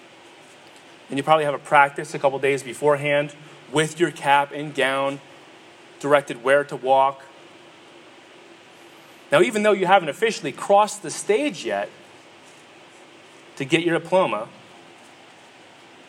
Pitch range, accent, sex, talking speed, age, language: 145-185 Hz, American, male, 125 wpm, 30-49, English